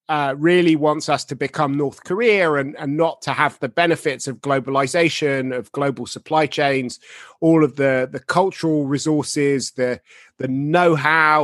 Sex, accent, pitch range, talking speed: male, British, 140-170 Hz, 155 wpm